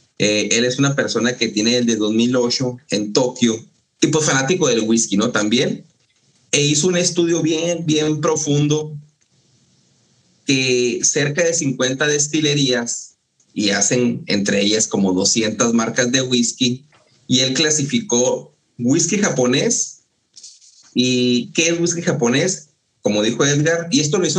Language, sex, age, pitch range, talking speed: Spanish, male, 30-49, 120-155 Hz, 140 wpm